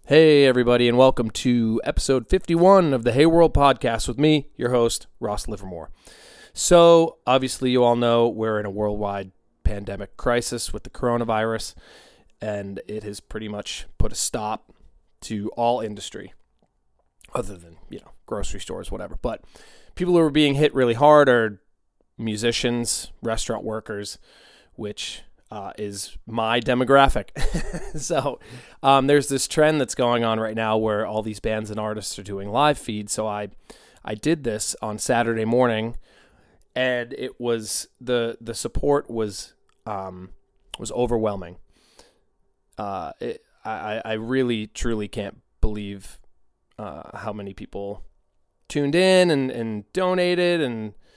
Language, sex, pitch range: English, male, 105-130 Hz